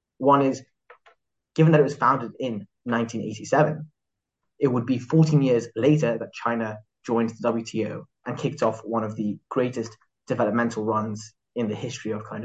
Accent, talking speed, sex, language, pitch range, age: British, 165 wpm, male, English, 110-135 Hz, 20-39